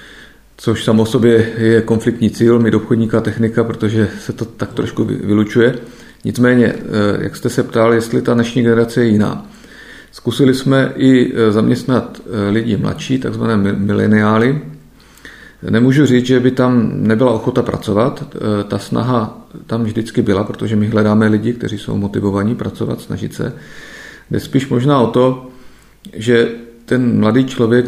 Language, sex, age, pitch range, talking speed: Czech, male, 40-59, 110-120 Hz, 140 wpm